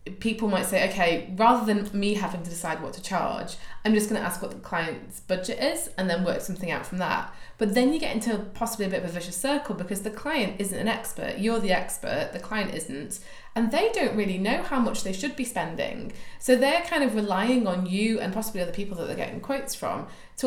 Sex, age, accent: female, 20-39, British